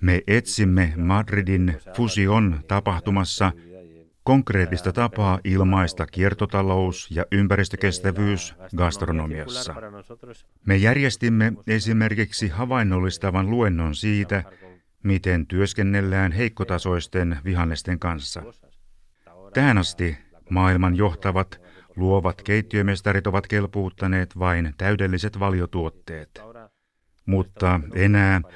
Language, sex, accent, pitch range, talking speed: Finnish, male, native, 90-100 Hz, 75 wpm